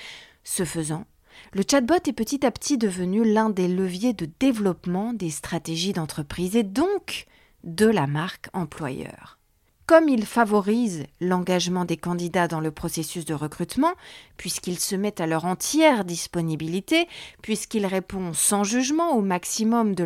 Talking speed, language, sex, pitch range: 145 wpm, French, female, 170-240 Hz